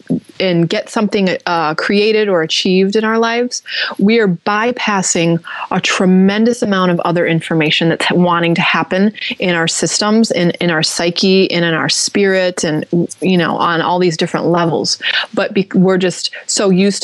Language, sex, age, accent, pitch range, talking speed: English, female, 20-39, American, 175-230 Hz, 165 wpm